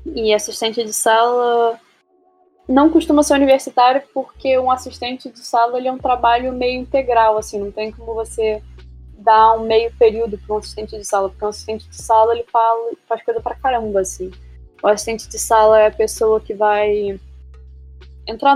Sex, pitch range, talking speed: female, 210-260 Hz, 180 wpm